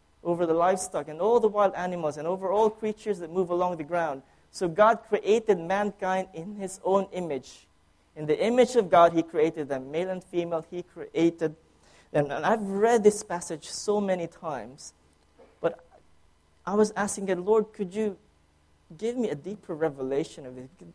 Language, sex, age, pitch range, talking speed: English, male, 20-39, 155-205 Hz, 180 wpm